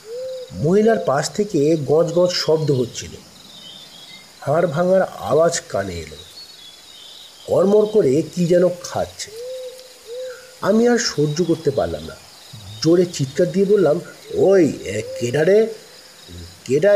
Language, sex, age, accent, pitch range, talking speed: Bengali, male, 50-69, native, 130-195 Hz, 75 wpm